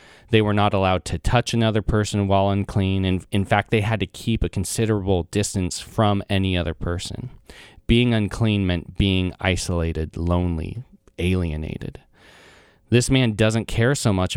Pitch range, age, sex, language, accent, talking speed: 90-110 Hz, 30-49, male, English, American, 155 wpm